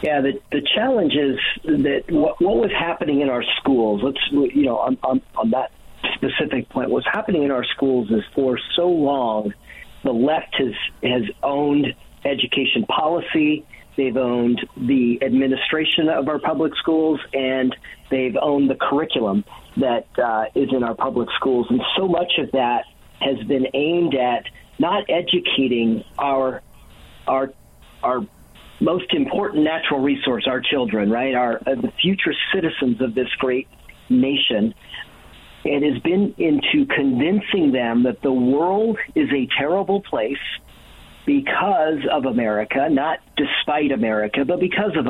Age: 50-69